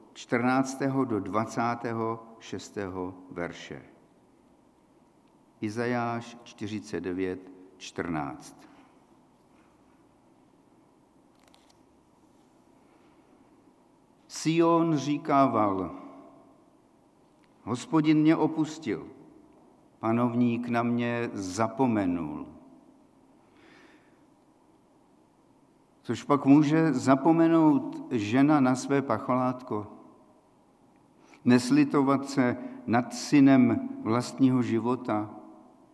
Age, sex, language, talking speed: 50-69, male, Czech, 50 wpm